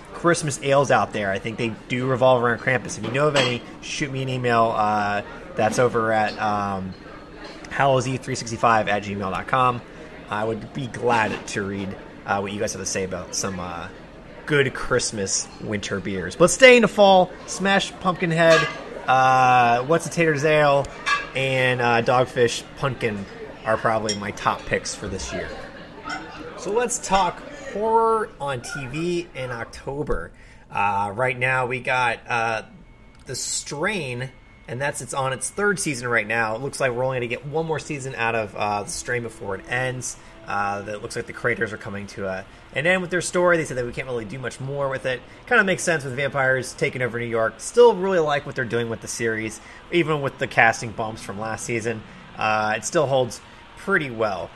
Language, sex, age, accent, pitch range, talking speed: English, male, 30-49, American, 110-145 Hz, 190 wpm